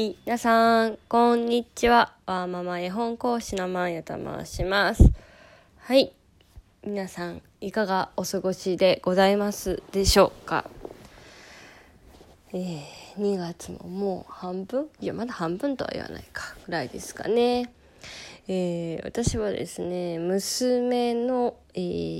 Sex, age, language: female, 20-39, Japanese